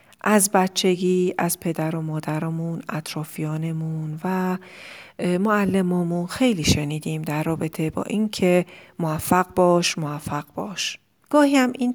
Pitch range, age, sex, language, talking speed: 160-195 Hz, 40-59, female, Persian, 105 wpm